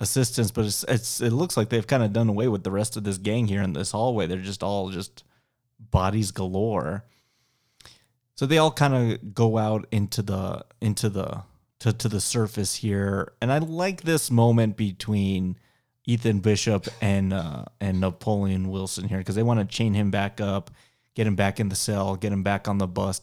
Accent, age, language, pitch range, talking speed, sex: American, 30-49, English, 95-120 Hz, 200 wpm, male